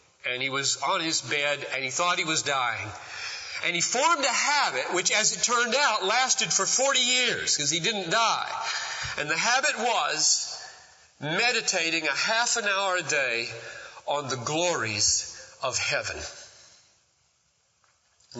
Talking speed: 155 wpm